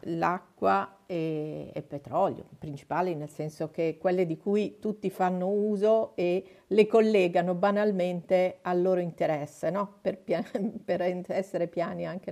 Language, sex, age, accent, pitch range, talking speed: Italian, female, 50-69, native, 170-215 Hz, 135 wpm